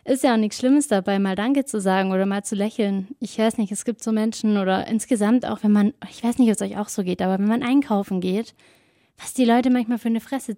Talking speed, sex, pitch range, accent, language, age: 265 wpm, female, 200-225 Hz, German, German, 20-39